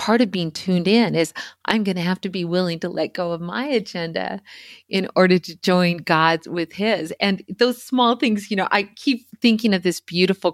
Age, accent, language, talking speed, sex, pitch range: 40-59, American, English, 215 wpm, female, 170-215 Hz